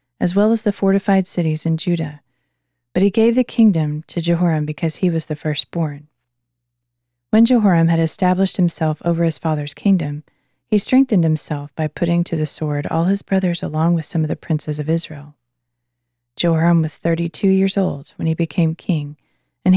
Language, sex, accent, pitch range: English, female, American, 145-190 Hz